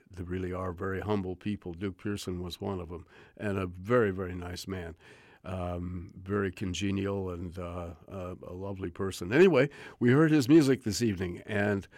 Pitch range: 95-110 Hz